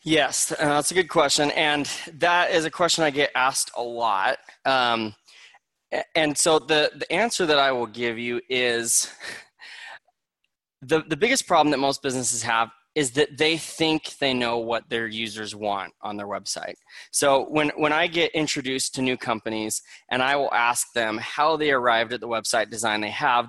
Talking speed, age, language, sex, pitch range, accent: 180 wpm, 20-39, English, male, 120-160 Hz, American